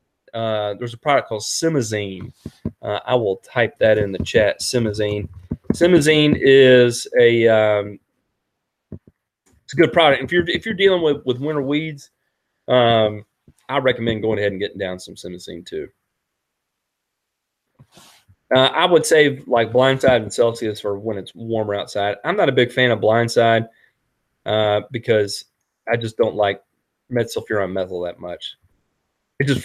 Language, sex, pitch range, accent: English, male, 110-155 Hz, American